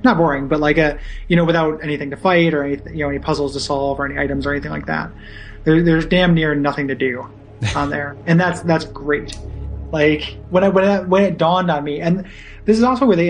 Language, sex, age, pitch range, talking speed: English, male, 20-39, 145-165 Hz, 235 wpm